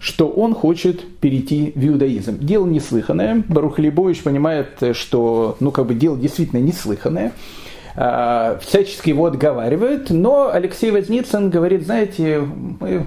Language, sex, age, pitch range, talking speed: Russian, male, 40-59, 140-205 Hz, 125 wpm